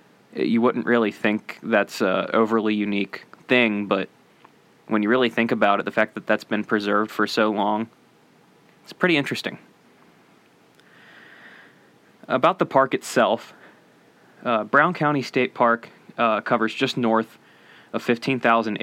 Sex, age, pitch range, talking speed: male, 20-39, 105-120 Hz, 135 wpm